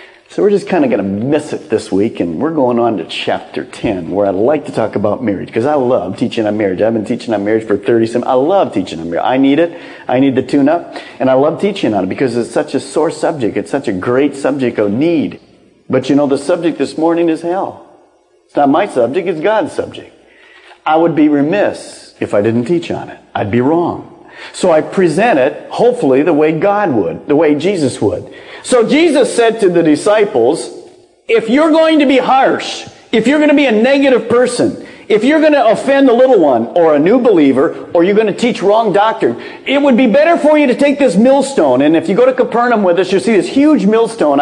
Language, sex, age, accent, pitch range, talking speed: English, male, 40-59, American, 150-245 Hz, 240 wpm